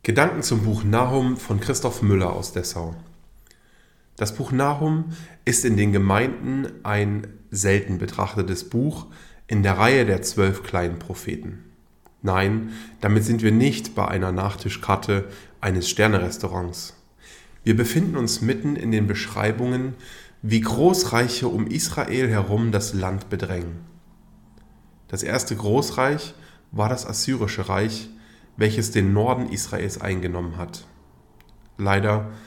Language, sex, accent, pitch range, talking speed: German, male, German, 100-120 Hz, 120 wpm